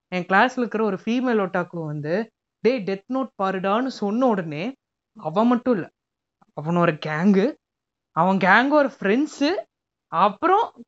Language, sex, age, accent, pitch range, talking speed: Tamil, female, 20-39, native, 190-265 Hz, 130 wpm